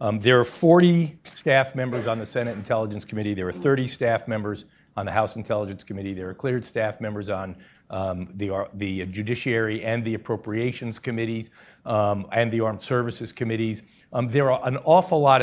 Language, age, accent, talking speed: English, 50-69, American, 185 wpm